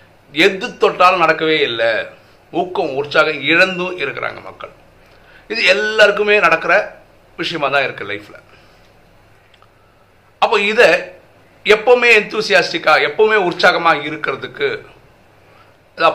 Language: Tamil